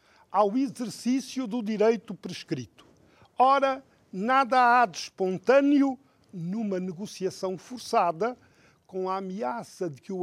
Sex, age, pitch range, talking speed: male, 50-69, 165-245 Hz, 110 wpm